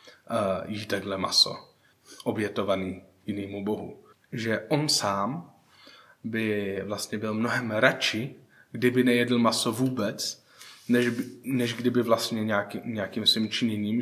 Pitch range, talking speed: 100-115 Hz, 115 wpm